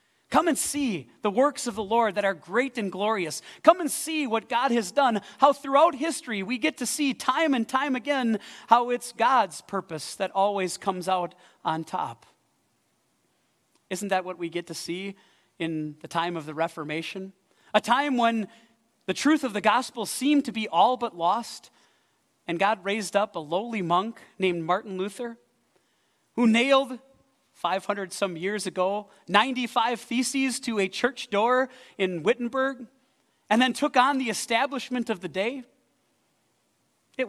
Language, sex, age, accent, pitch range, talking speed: English, male, 40-59, American, 185-250 Hz, 165 wpm